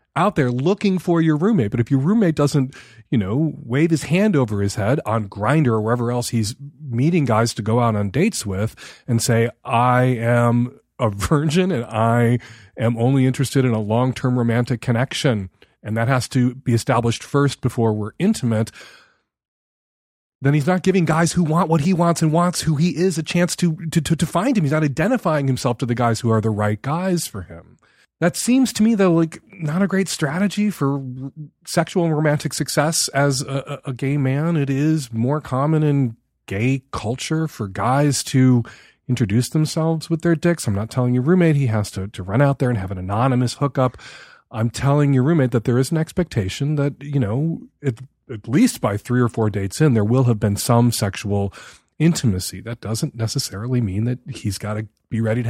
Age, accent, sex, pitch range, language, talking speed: 30-49, American, male, 115-160 Hz, English, 200 wpm